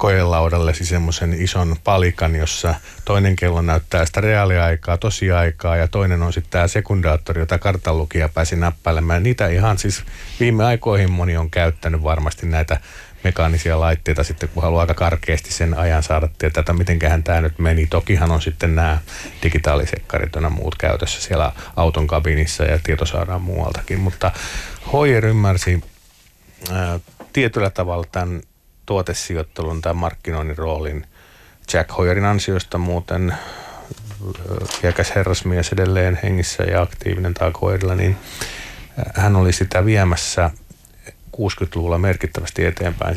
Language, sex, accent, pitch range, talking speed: Finnish, male, native, 80-95 Hz, 130 wpm